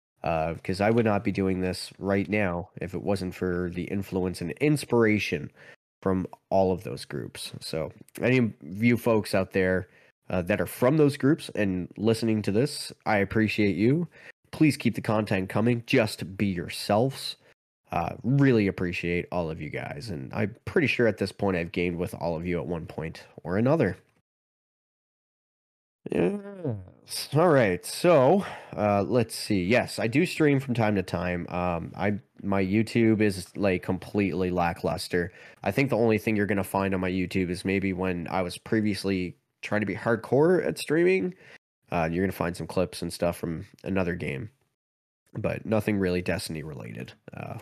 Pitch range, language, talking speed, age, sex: 90-115 Hz, English, 175 wpm, 20-39, male